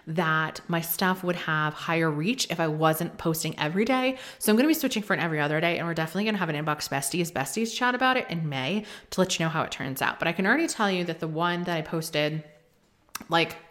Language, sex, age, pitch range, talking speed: English, female, 20-39, 160-200 Hz, 265 wpm